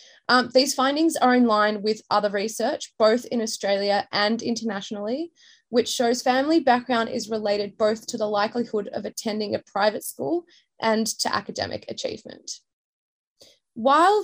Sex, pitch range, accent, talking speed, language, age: female, 220-285 Hz, Australian, 145 wpm, English, 20-39